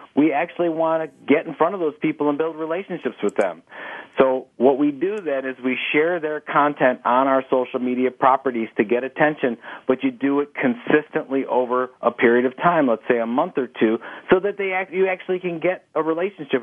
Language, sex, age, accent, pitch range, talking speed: English, male, 40-59, American, 130-155 Hz, 215 wpm